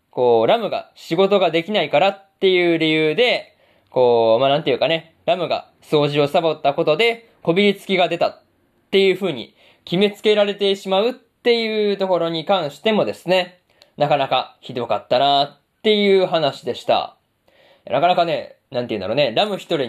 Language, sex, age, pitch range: Japanese, male, 20-39, 145-195 Hz